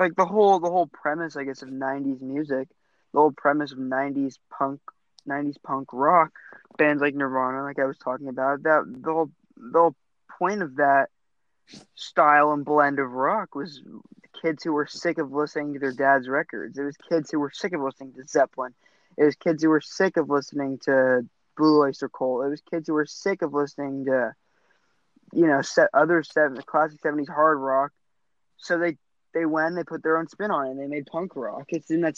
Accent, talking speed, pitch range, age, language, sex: American, 205 wpm, 140-165 Hz, 20-39, English, male